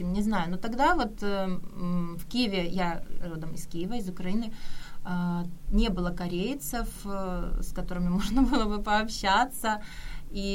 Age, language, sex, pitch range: 20-39, Korean, female, 180-220 Hz